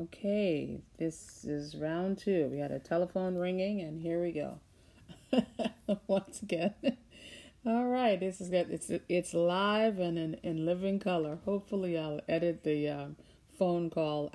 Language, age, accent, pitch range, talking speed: English, 40-59, American, 150-185 Hz, 150 wpm